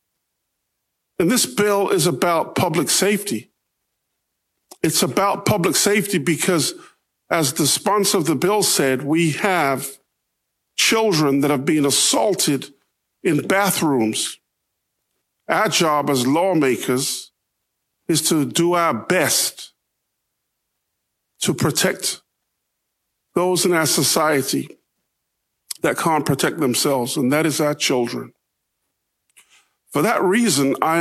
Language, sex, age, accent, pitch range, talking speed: English, male, 50-69, American, 140-175 Hz, 110 wpm